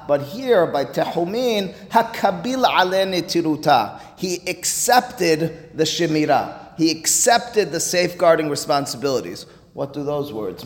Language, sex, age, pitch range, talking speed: English, male, 30-49, 135-180 Hz, 115 wpm